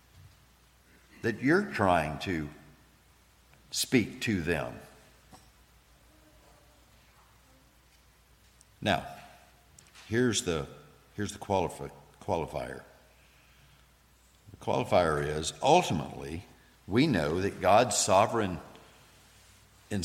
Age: 60-79